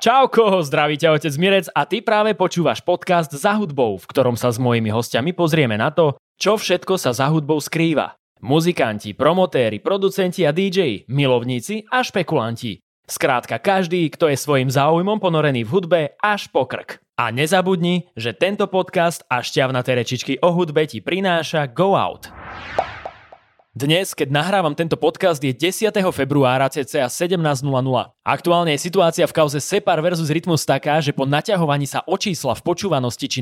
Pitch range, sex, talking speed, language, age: 135-175 Hz, male, 155 wpm, English, 20-39